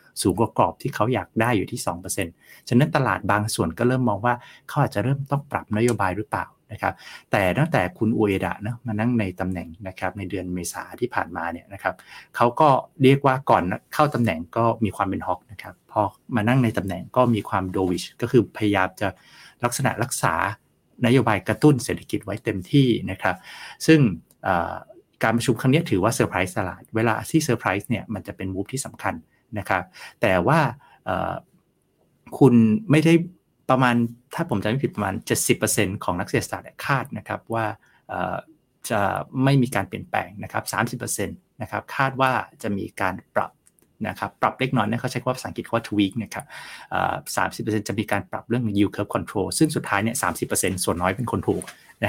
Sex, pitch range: male, 100-130 Hz